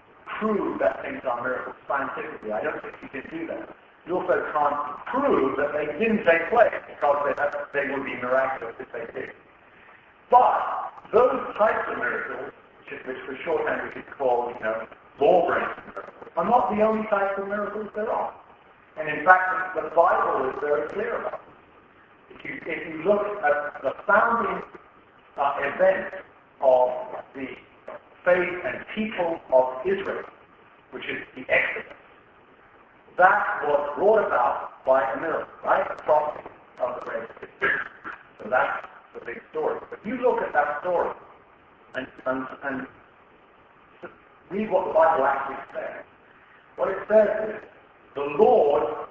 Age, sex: 50-69, male